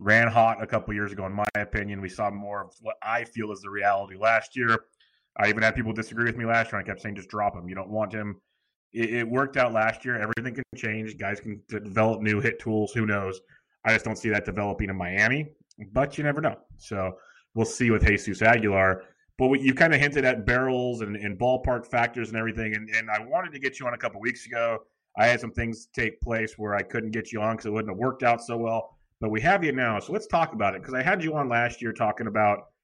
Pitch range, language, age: 105-120 Hz, English, 30-49